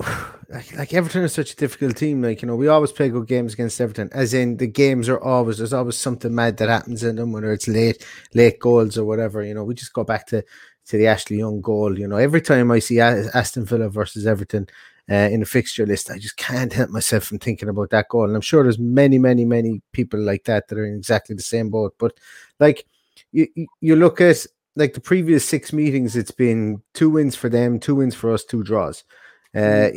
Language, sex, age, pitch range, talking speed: English, male, 30-49, 110-140 Hz, 235 wpm